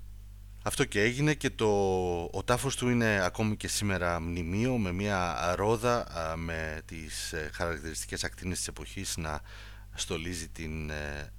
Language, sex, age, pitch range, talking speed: Greek, male, 30-49, 85-105 Hz, 130 wpm